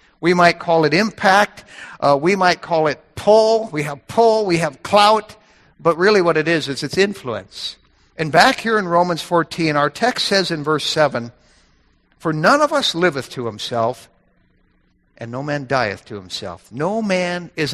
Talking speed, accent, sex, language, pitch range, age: 180 wpm, American, male, English, 150-205 Hz, 60-79